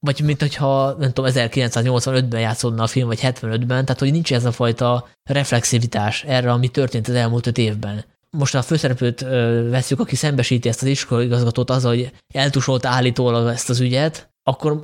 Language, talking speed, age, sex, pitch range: Hungarian, 180 wpm, 20-39, male, 120-140 Hz